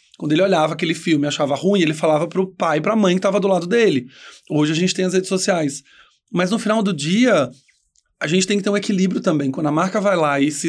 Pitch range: 160-200 Hz